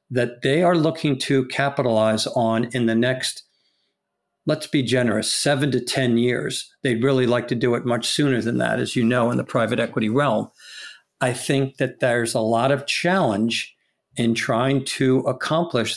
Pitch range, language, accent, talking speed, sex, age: 120-140 Hz, English, American, 175 wpm, male, 50-69